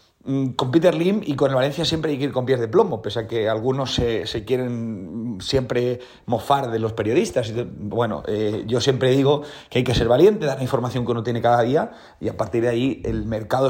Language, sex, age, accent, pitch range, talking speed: Spanish, male, 30-49, Spanish, 120-140 Hz, 230 wpm